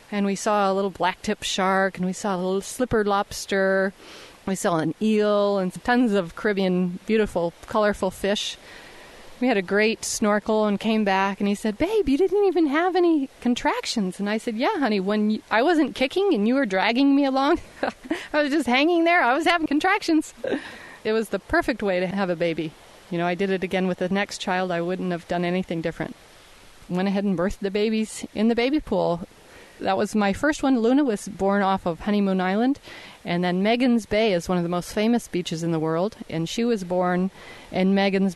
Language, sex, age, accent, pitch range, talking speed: English, female, 30-49, American, 185-225 Hz, 210 wpm